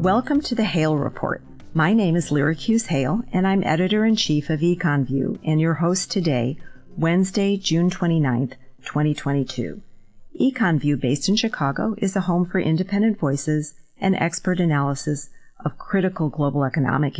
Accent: American